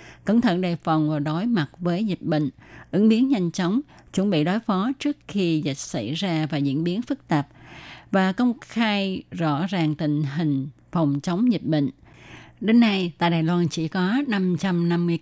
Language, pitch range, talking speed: Vietnamese, 155-200 Hz, 185 wpm